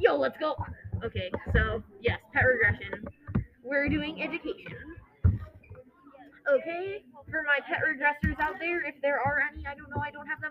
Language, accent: English, American